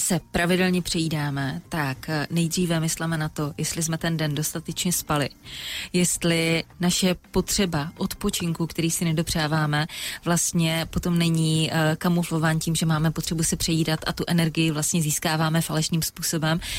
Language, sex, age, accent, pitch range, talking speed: Czech, female, 20-39, native, 155-175 Hz, 135 wpm